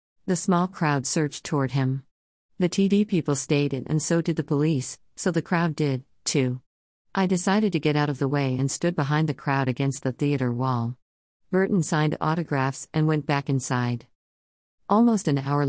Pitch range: 130-165 Hz